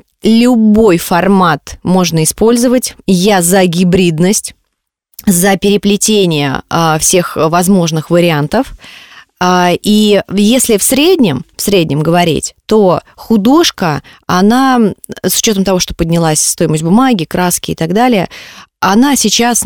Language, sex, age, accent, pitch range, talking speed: Russian, female, 20-39, native, 165-210 Hz, 115 wpm